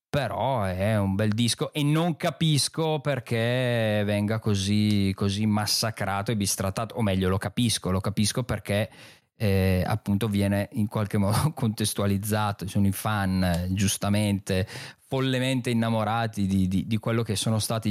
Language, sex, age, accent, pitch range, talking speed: Italian, male, 20-39, native, 100-120 Hz, 140 wpm